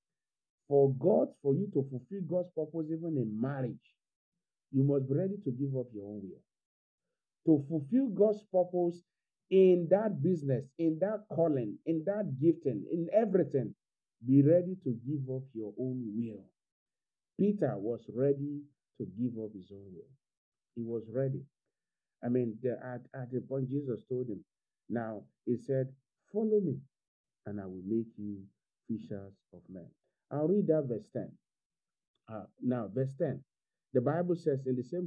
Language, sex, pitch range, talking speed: English, male, 120-160 Hz, 160 wpm